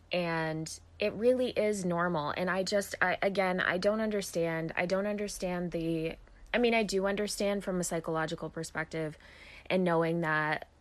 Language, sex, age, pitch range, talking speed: English, female, 20-39, 150-185 Hz, 160 wpm